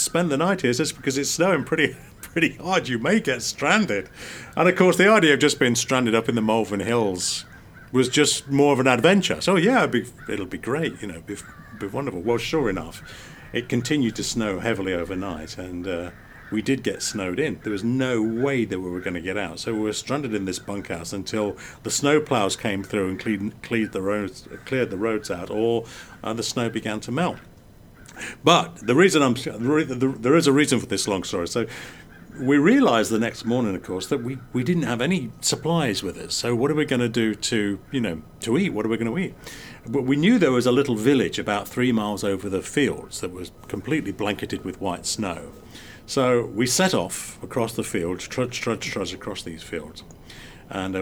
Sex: male